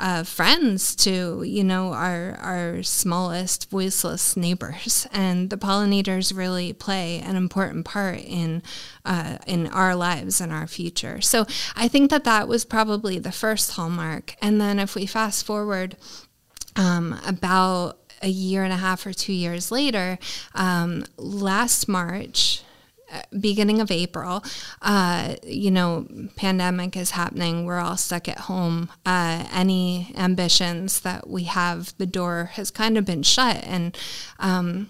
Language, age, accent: English, 20-39, American